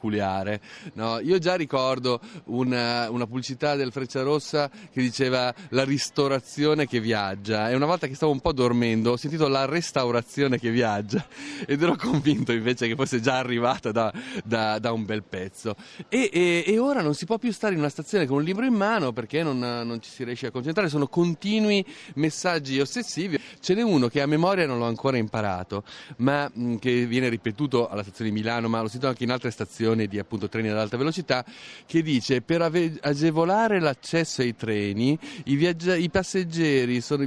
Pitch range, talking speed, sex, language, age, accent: 120-170 Hz, 185 wpm, male, Italian, 30-49, native